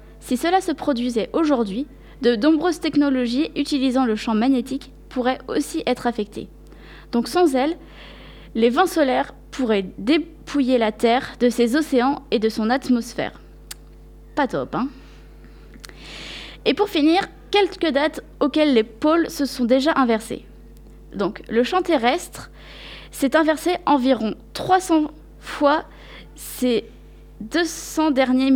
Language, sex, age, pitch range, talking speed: French, female, 20-39, 245-310 Hz, 125 wpm